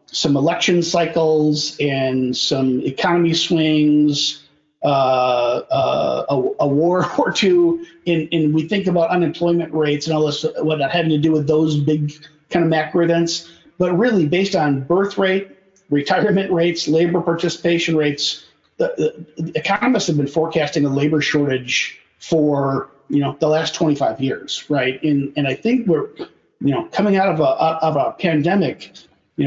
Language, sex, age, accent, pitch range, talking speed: English, male, 40-59, American, 150-175 Hz, 155 wpm